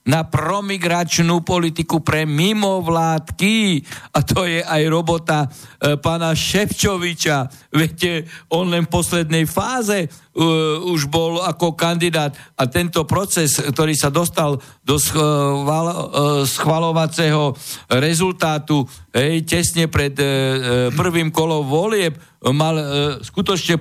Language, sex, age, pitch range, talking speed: Slovak, male, 60-79, 145-170 Hz, 110 wpm